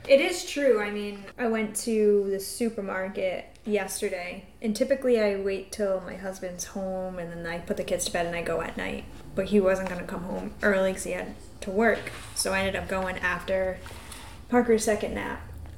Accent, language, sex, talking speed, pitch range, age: American, English, female, 205 wpm, 190-220 Hz, 10-29